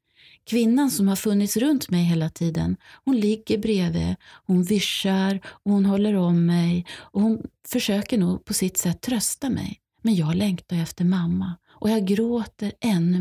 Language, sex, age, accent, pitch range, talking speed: Swedish, female, 30-49, native, 170-220 Hz, 165 wpm